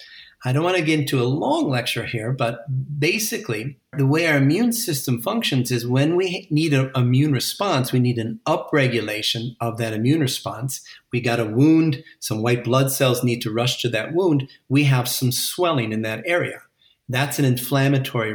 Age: 40-59